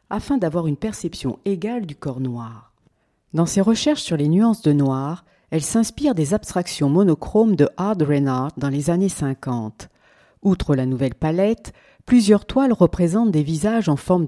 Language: French